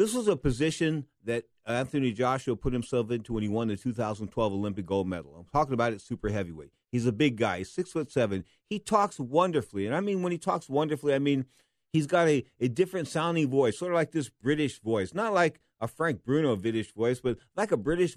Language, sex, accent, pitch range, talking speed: English, male, American, 120-165 Hz, 220 wpm